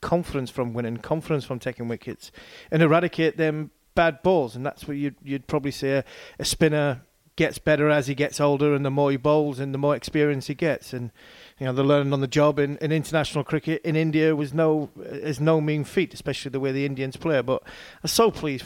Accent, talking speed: British, 220 wpm